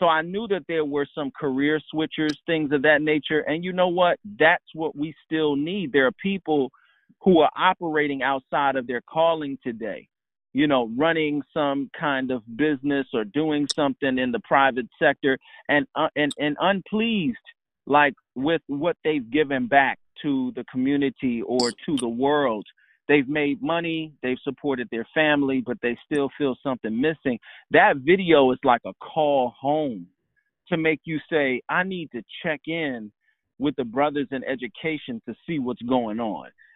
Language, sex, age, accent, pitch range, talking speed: English, male, 40-59, American, 130-160 Hz, 170 wpm